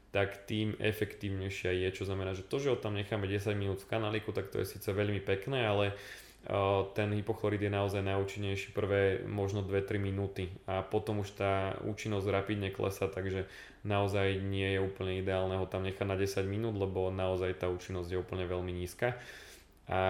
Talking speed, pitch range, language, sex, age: 180 wpm, 95-100 Hz, Slovak, male, 20-39